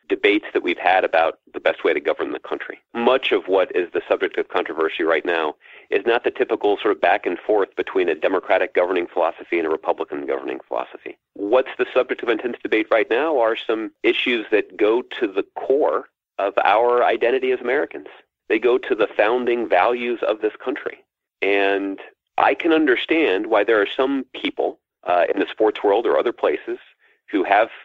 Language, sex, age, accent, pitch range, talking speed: English, male, 40-59, American, 350-425 Hz, 195 wpm